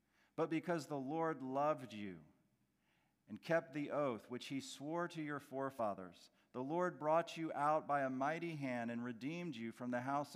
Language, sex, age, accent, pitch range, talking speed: English, male, 40-59, American, 125-180 Hz, 180 wpm